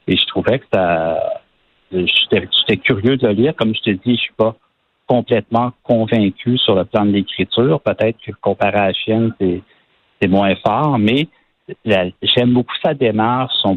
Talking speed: 185 wpm